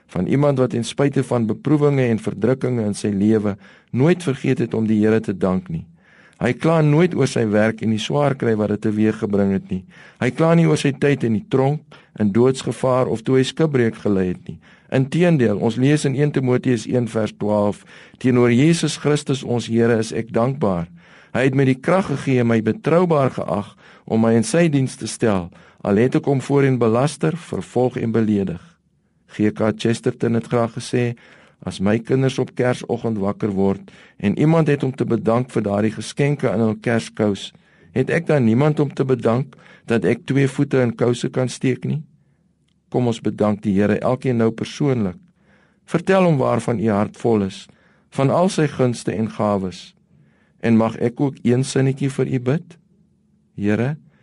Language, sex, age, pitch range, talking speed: English, male, 50-69, 110-140 Hz, 190 wpm